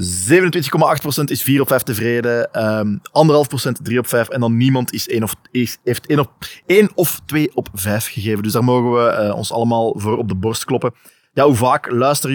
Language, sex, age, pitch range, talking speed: Dutch, male, 20-39, 115-145 Hz, 210 wpm